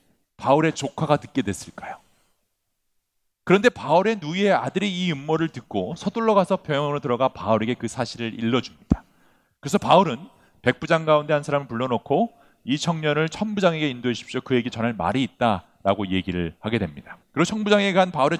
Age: 40-59